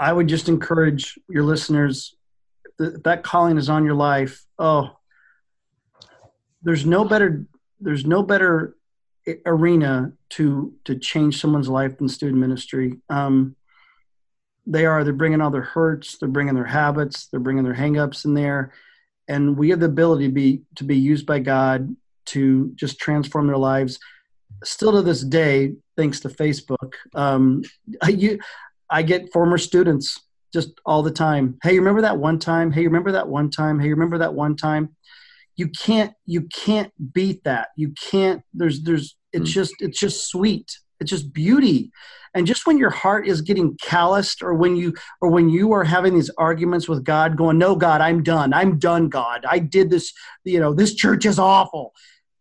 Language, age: English, 40-59